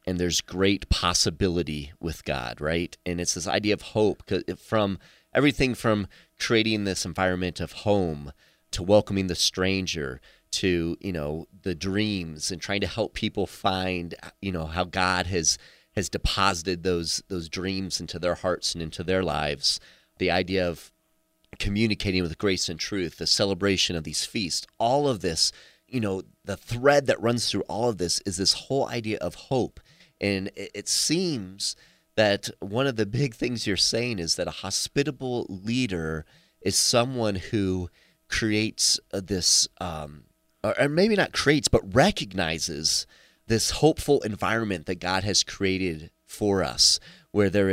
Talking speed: 155 wpm